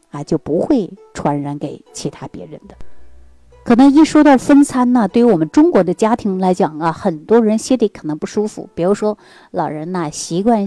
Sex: female